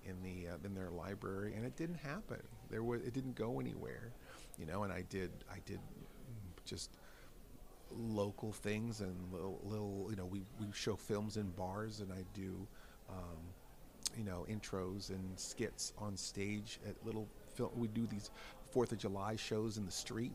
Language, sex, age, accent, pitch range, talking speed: English, male, 40-59, American, 95-120 Hz, 180 wpm